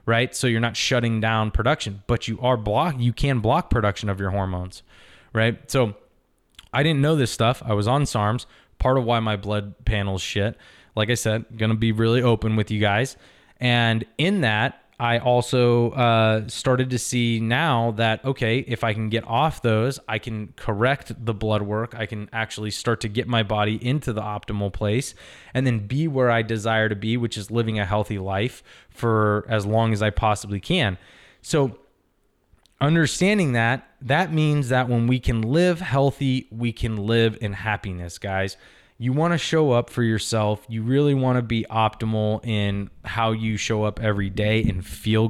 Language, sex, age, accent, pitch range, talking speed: English, male, 20-39, American, 105-130 Hz, 190 wpm